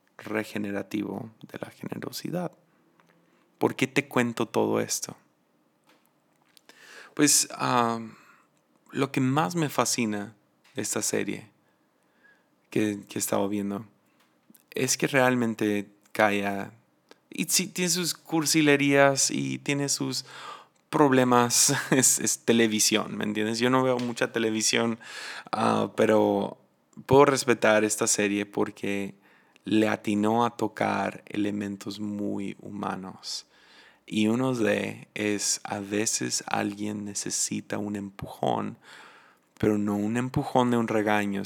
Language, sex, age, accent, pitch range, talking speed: Spanish, male, 20-39, Mexican, 100-120 Hz, 115 wpm